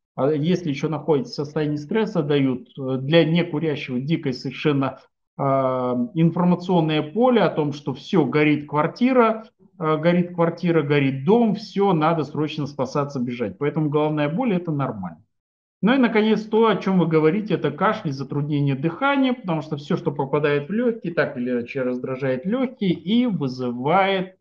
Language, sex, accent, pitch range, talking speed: Russian, male, native, 145-190 Hz, 150 wpm